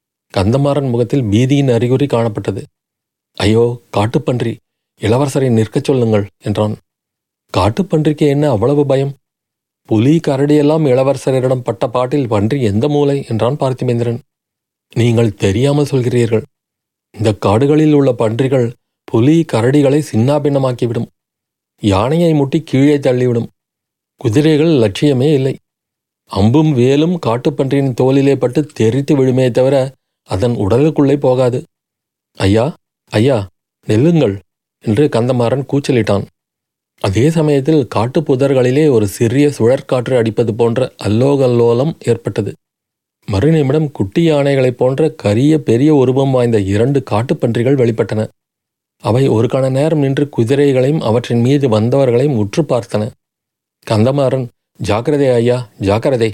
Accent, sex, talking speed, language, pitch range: native, male, 100 wpm, Tamil, 115-145 Hz